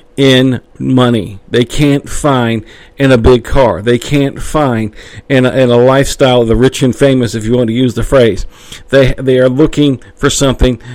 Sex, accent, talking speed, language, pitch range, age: male, American, 190 wpm, English, 115-140 Hz, 50-69